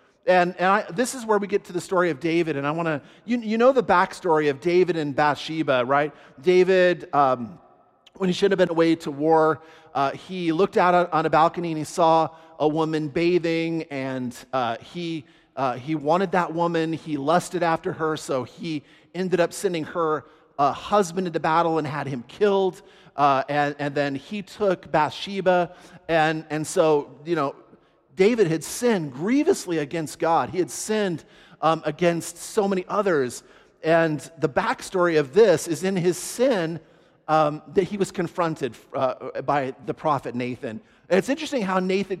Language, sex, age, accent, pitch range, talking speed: English, male, 40-59, American, 145-180 Hz, 180 wpm